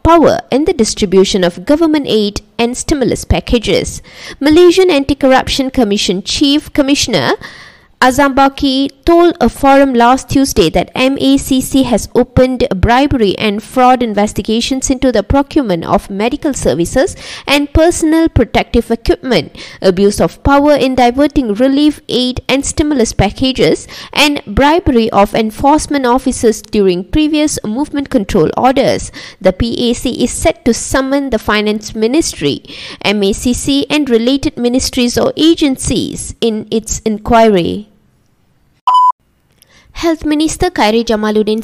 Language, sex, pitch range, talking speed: English, female, 210-280 Hz, 120 wpm